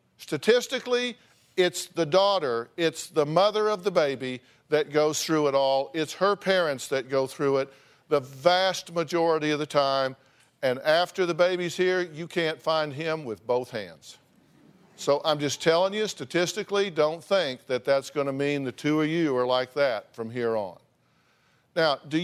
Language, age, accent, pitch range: English, 50-69, American, 140-180 Hz